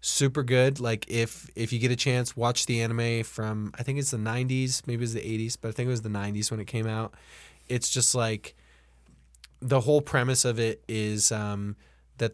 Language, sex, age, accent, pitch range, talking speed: English, male, 20-39, American, 95-115 Hz, 220 wpm